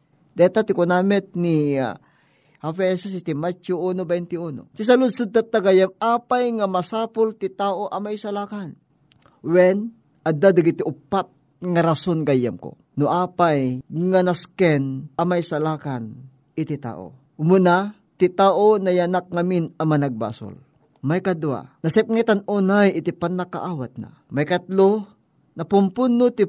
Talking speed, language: 135 wpm, Filipino